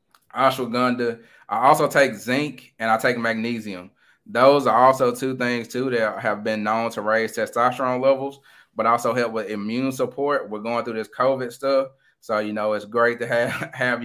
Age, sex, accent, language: 20-39, male, American, English